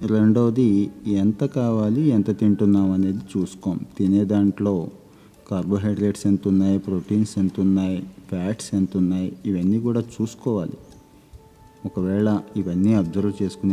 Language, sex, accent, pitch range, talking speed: Telugu, male, native, 95-105 Hz, 65 wpm